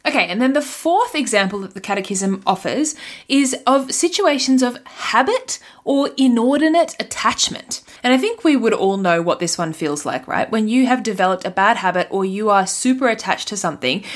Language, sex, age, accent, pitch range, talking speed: English, female, 20-39, Australian, 190-260 Hz, 190 wpm